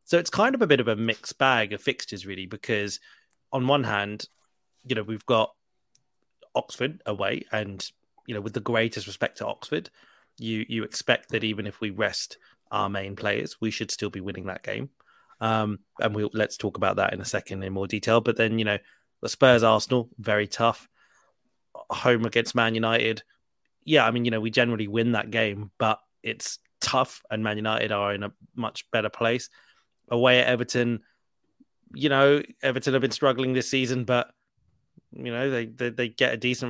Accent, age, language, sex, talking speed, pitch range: British, 20-39, English, male, 195 wpm, 110-125 Hz